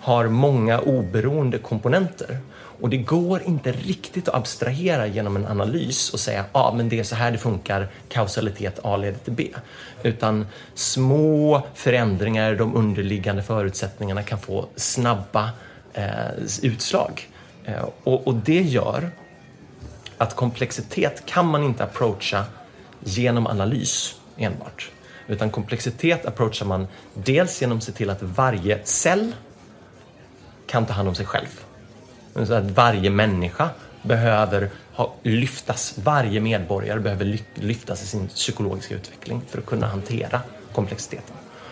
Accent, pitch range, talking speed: native, 105-130 Hz, 130 wpm